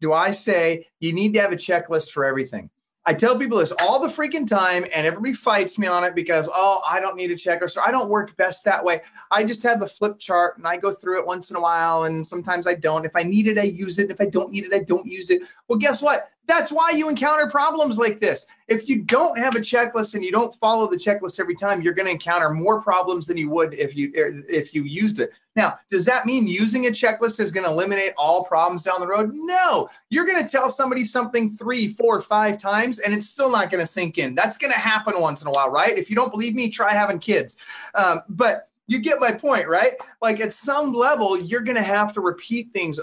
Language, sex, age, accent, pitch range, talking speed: English, male, 30-49, American, 175-235 Hz, 250 wpm